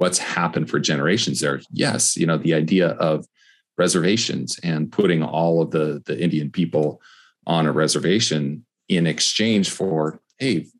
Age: 40-59